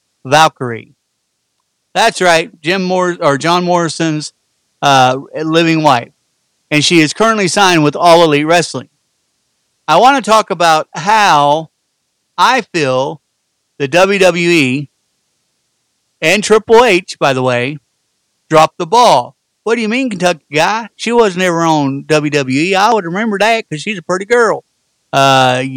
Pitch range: 145-195 Hz